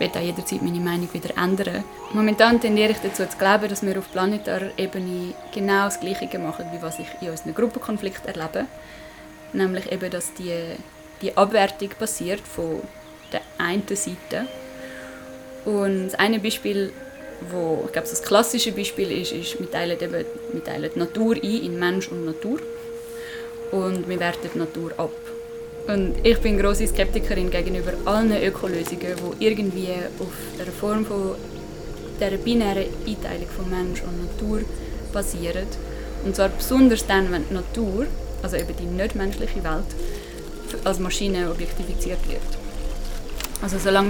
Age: 20-39